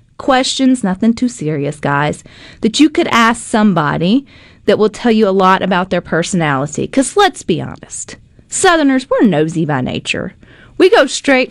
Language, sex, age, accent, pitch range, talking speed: English, female, 30-49, American, 175-245 Hz, 160 wpm